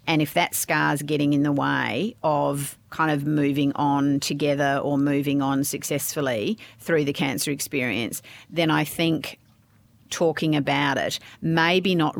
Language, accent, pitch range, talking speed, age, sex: English, Australian, 140-155 Hz, 155 wpm, 40-59, female